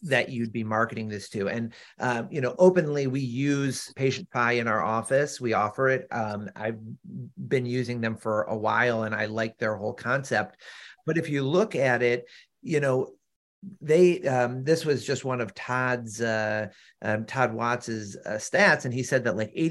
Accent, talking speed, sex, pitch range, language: American, 190 wpm, male, 115-140 Hz, English